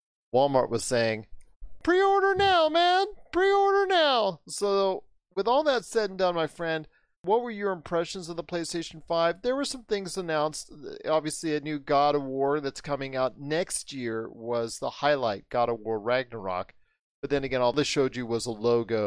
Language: English